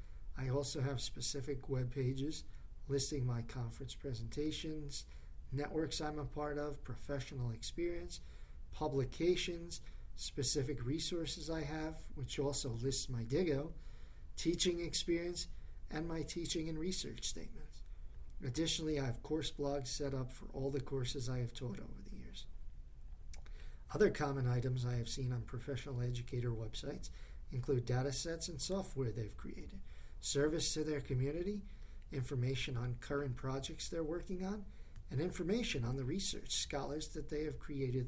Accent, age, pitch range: American, 50-69, 120-155 Hz